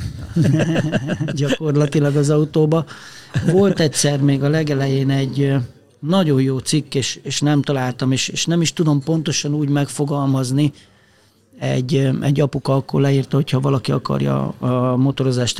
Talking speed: 130 wpm